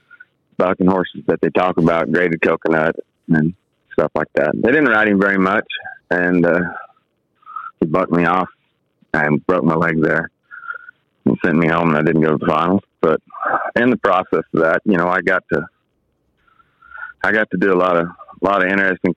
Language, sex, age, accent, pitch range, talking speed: English, male, 30-49, American, 85-130 Hz, 195 wpm